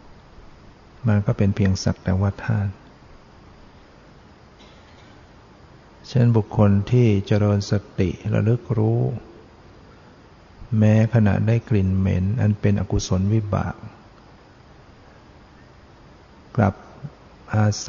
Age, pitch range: 60-79, 100-110 Hz